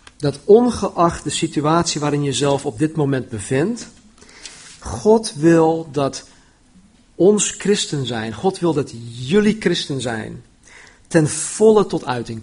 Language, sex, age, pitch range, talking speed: Dutch, male, 50-69, 130-175 Hz, 130 wpm